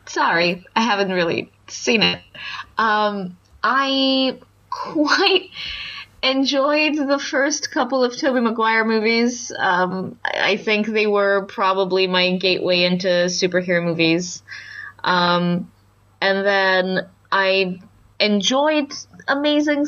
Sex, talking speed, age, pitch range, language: female, 105 wpm, 20-39, 180-260 Hz, English